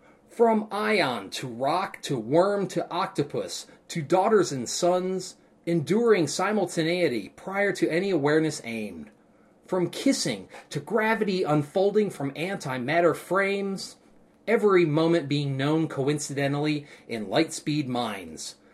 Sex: male